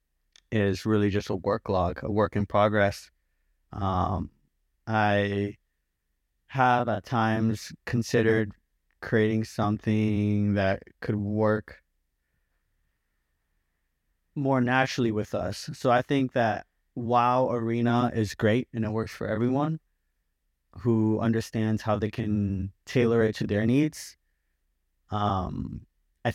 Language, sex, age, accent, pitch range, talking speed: English, male, 30-49, American, 100-120 Hz, 115 wpm